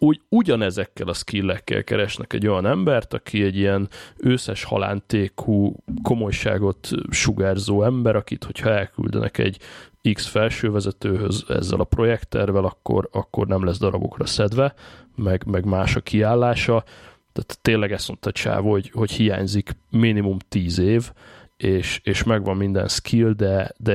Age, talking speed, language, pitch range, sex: 20-39, 135 wpm, Hungarian, 100-115 Hz, male